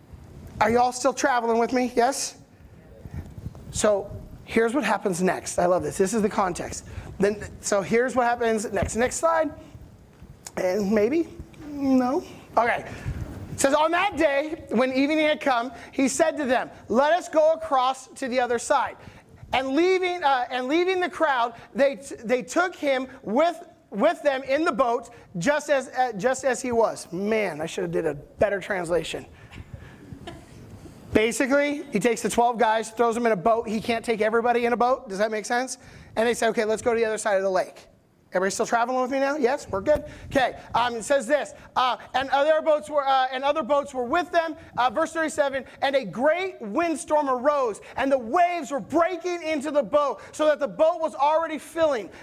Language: English